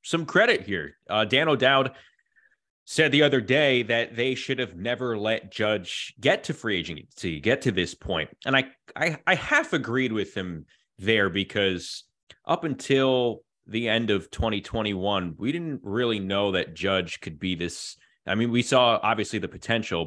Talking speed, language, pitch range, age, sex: 170 wpm, English, 95-115 Hz, 20-39, male